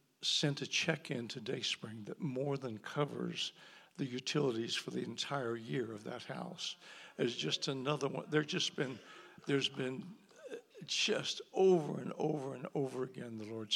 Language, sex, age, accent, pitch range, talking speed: English, male, 60-79, American, 120-150 Hz, 155 wpm